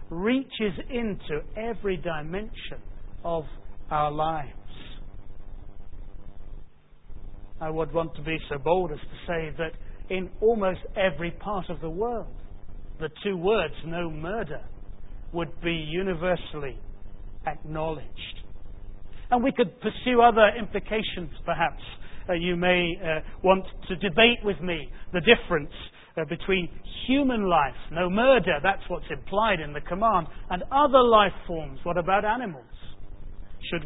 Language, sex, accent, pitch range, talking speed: English, male, British, 150-205 Hz, 130 wpm